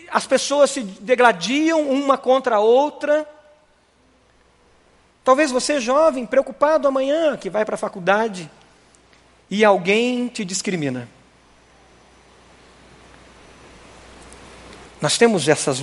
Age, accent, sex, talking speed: 40-59, Brazilian, male, 95 wpm